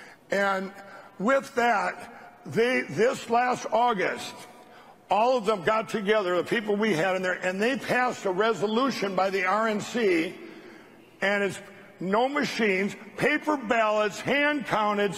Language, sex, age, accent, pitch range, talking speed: English, male, 60-79, American, 205-250 Hz, 135 wpm